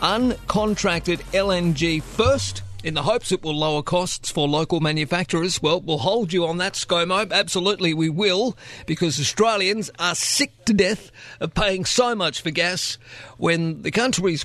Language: English